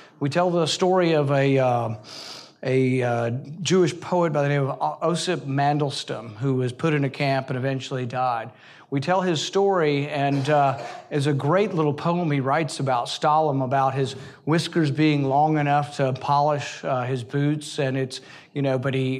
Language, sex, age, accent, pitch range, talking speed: English, male, 40-59, American, 140-190 Hz, 180 wpm